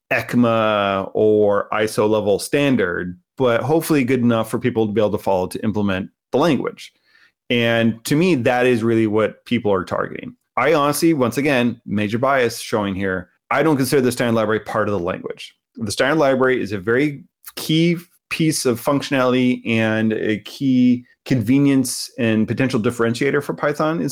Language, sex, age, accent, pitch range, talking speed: English, male, 30-49, American, 110-140 Hz, 170 wpm